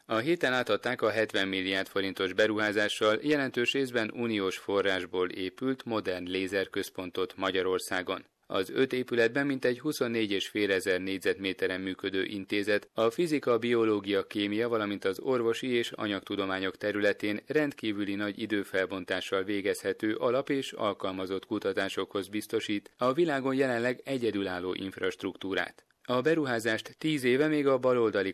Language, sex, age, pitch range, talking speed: Hungarian, male, 30-49, 95-120 Hz, 120 wpm